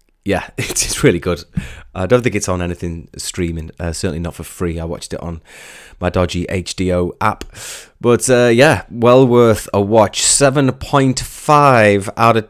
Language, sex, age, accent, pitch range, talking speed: English, male, 20-39, British, 85-115 Hz, 165 wpm